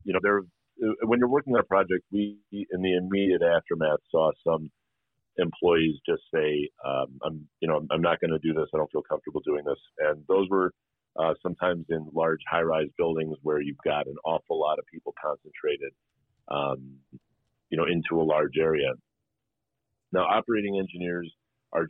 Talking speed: 170 wpm